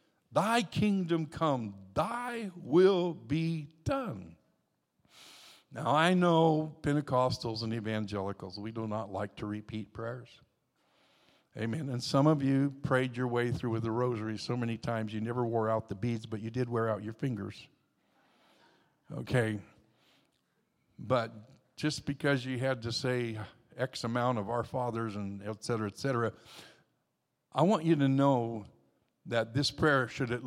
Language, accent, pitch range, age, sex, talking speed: English, American, 115-150 Hz, 60-79, male, 150 wpm